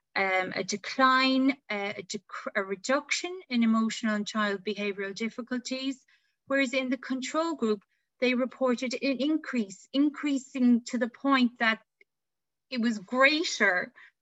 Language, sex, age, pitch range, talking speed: English, female, 30-49, 205-265 Hz, 125 wpm